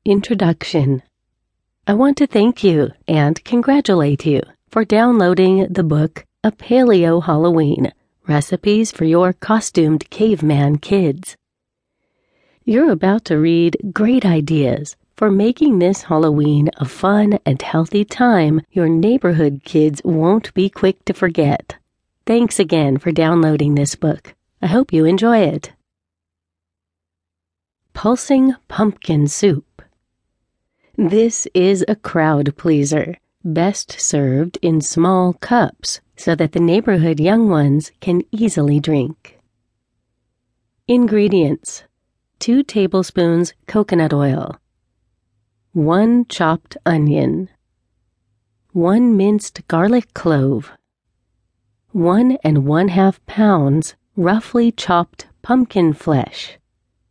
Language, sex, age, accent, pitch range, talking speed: English, female, 40-59, American, 145-205 Hz, 100 wpm